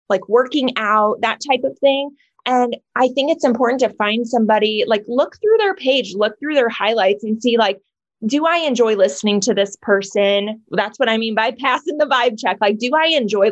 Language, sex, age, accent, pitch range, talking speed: English, female, 20-39, American, 200-245 Hz, 210 wpm